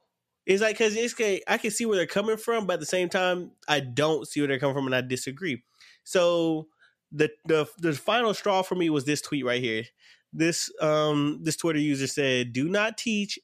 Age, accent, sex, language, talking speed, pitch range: 20-39, American, male, English, 215 wpm, 145-190 Hz